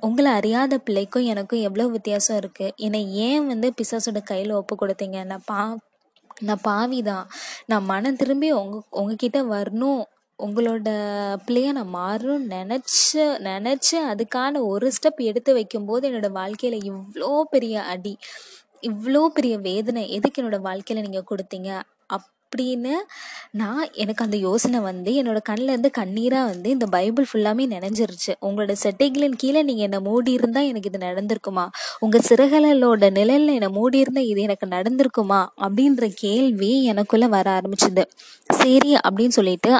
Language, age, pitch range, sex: Tamil, 20-39, 205-260 Hz, female